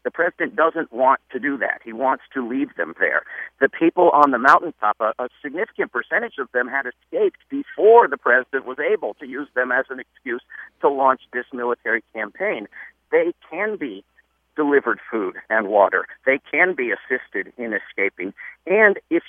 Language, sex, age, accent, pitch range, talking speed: English, male, 50-69, American, 135-210 Hz, 175 wpm